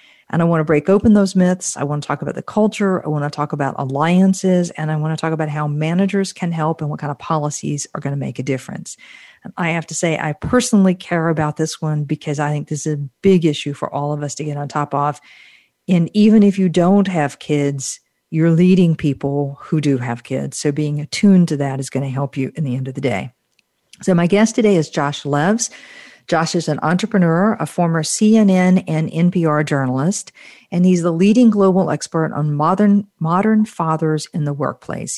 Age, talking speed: 50-69, 220 wpm